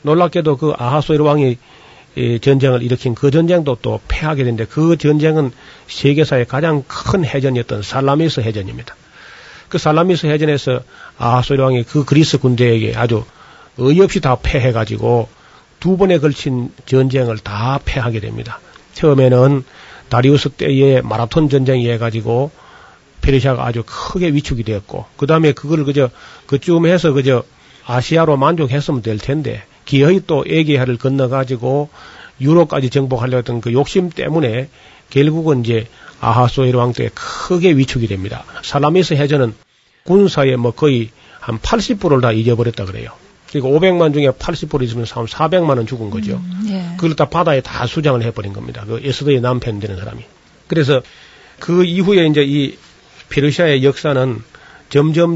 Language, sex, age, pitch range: Korean, male, 40-59, 120-155 Hz